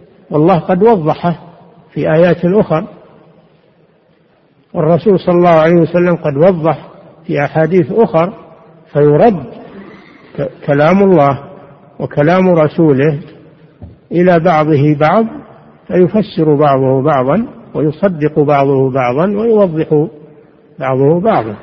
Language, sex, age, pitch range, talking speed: Arabic, male, 60-79, 145-185 Hz, 90 wpm